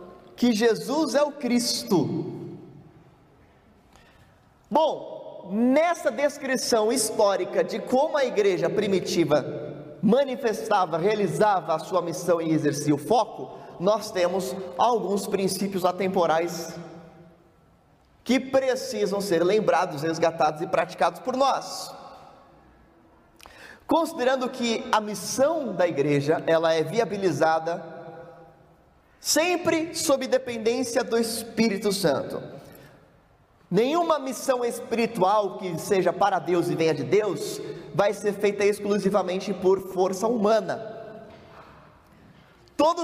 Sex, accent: male, Brazilian